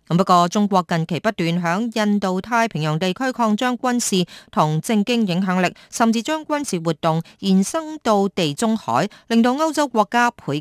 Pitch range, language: 175-225 Hz, Chinese